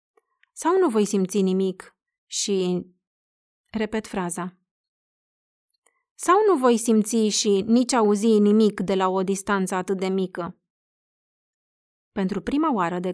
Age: 30-49